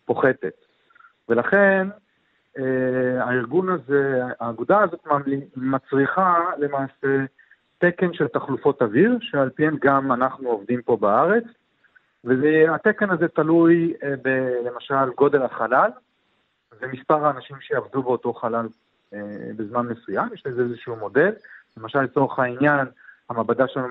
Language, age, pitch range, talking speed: Hebrew, 40-59, 125-165 Hz, 115 wpm